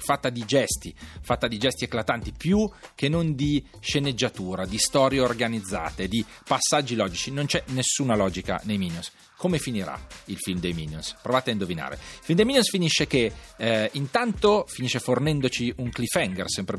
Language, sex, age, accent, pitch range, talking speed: Italian, male, 40-59, native, 105-160 Hz, 165 wpm